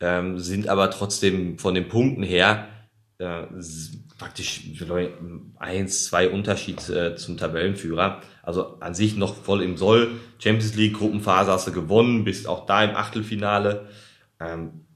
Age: 30-49